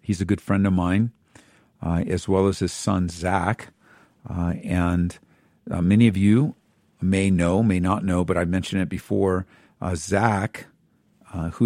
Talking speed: 165 wpm